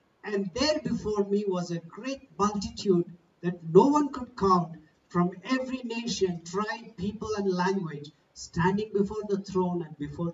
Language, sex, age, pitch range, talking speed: English, male, 60-79, 170-225 Hz, 150 wpm